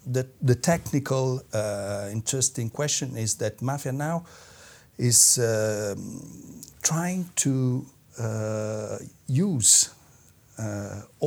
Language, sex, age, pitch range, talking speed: English, male, 60-79, 105-135 Hz, 90 wpm